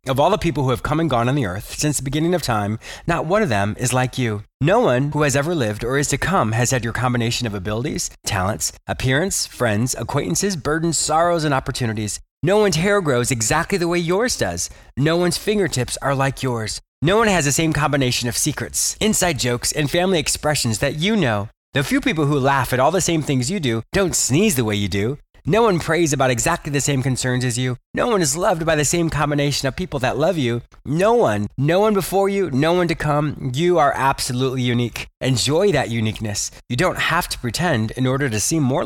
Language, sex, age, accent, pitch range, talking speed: English, male, 30-49, American, 120-165 Hz, 225 wpm